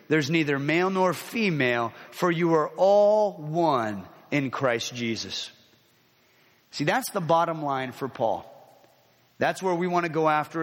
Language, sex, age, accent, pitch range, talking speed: English, male, 30-49, American, 145-195 Hz, 150 wpm